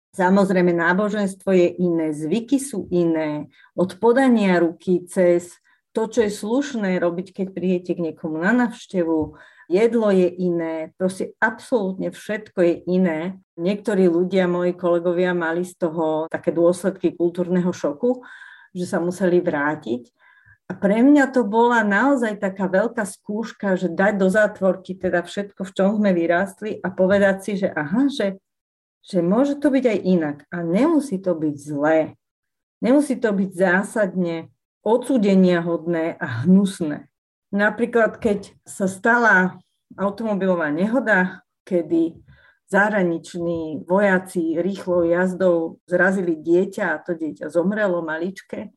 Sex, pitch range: female, 175-205 Hz